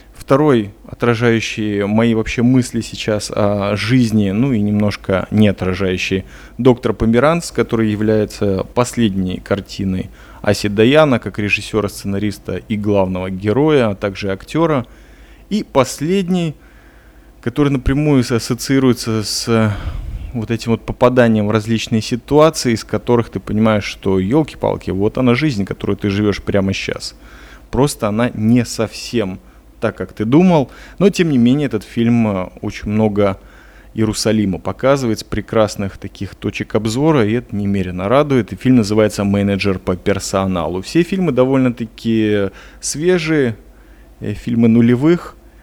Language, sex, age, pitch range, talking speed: Russian, male, 20-39, 100-125 Hz, 125 wpm